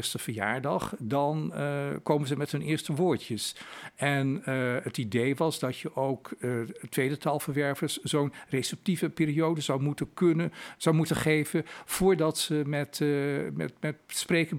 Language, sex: Dutch, male